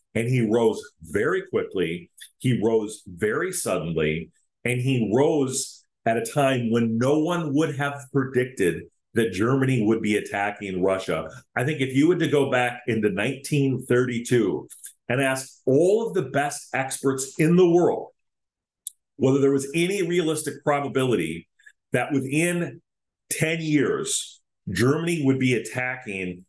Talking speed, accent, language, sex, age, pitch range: 140 wpm, American, English, male, 40-59, 110-145 Hz